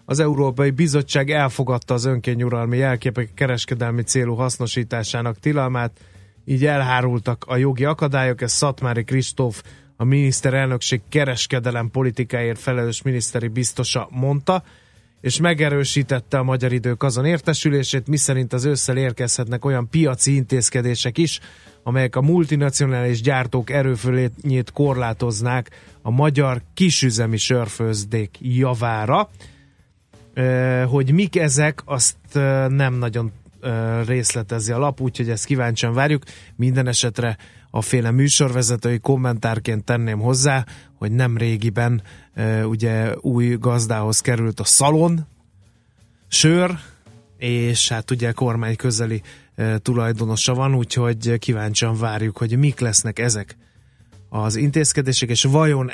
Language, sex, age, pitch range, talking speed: Hungarian, male, 30-49, 115-135 Hz, 110 wpm